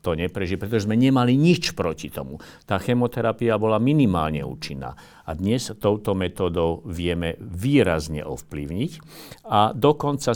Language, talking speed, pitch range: Slovak, 120 wpm, 85-120 Hz